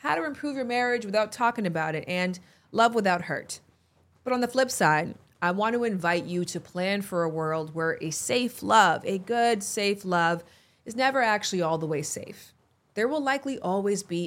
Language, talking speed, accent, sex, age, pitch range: English, 200 wpm, American, female, 30-49, 160-225 Hz